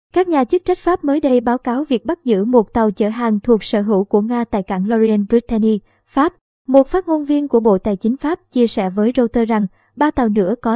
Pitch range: 215-275 Hz